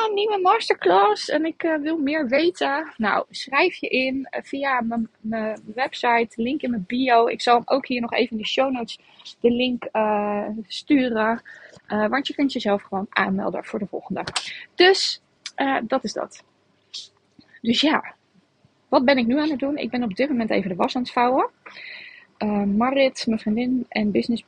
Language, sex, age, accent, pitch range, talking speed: Dutch, female, 20-39, Dutch, 215-280 Hz, 185 wpm